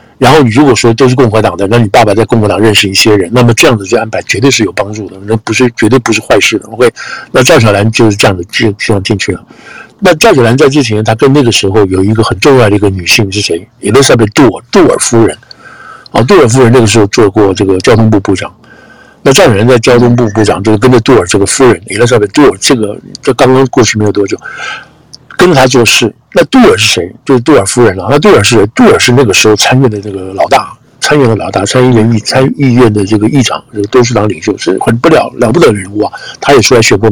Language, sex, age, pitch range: Chinese, male, 60-79, 100-120 Hz